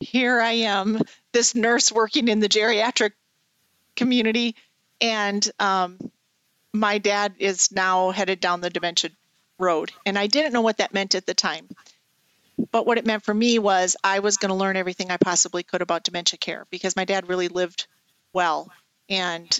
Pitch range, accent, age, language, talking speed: 185-220 Hz, American, 40-59, English, 175 wpm